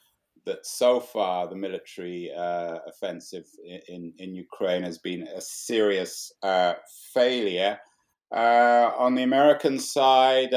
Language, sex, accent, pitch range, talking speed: English, male, British, 100-125 Hz, 120 wpm